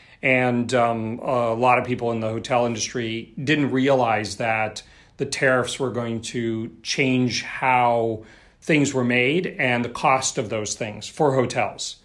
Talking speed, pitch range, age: 155 wpm, 110-130 Hz, 40-59